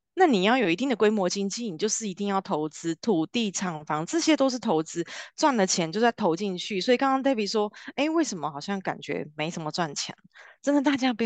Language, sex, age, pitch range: Chinese, female, 20-39, 185-275 Hz